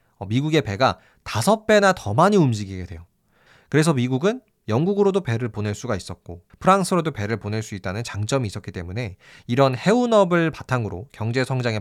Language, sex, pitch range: Korean, male, 105-165 Hz